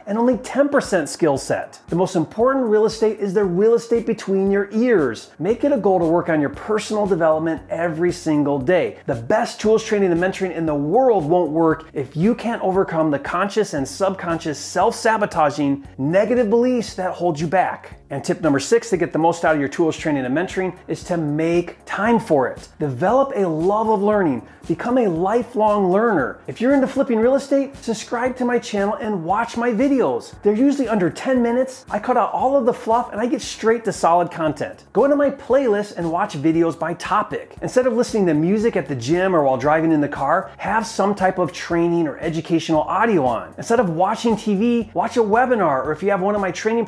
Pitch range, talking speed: 170-230 Hz, 215 wpm